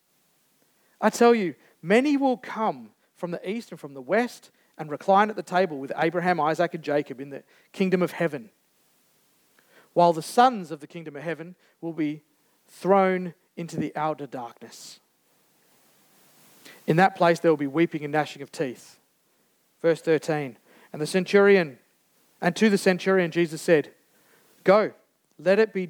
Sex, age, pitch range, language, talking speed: male, 40-59, 155-185 Hz, English, 160 wpm